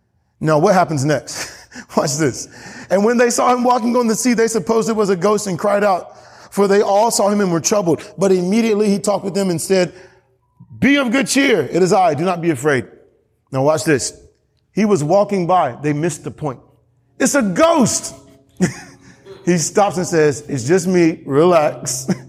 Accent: American